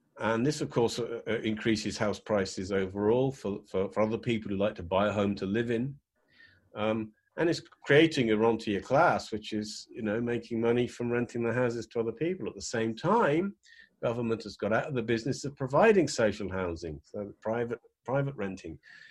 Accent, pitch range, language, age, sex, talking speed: British, 110-155 Hz, English, 50-69, male, 200 wpm